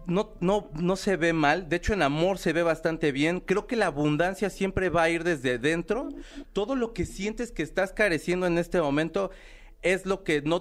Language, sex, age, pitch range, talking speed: Spanish, male, 40-59, 145-175 Hz, 215 wpm